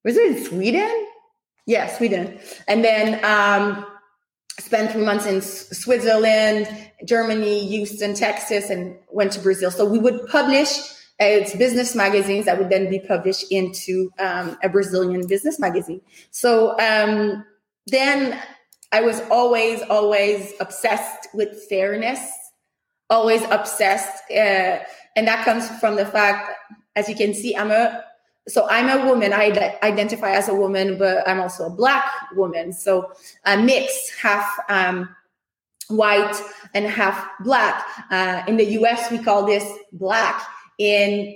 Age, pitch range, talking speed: 20-39, 195-230 Hz, 140 wpm